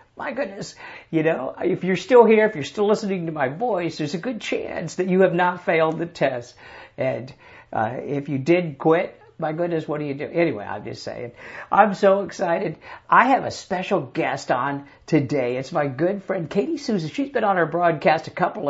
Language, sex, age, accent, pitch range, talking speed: English, male, 60-79, American, 155-195 Hz, 210 wpm